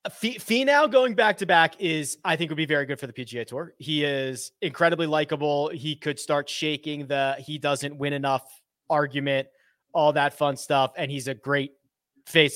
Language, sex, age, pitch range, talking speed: English, male, 30-49, 140-185 Hz, 190 wpm